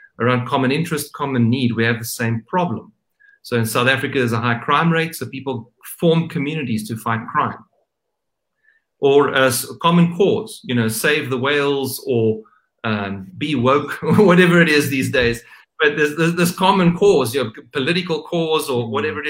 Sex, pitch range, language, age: male, 115-155 Hz, English, 40-59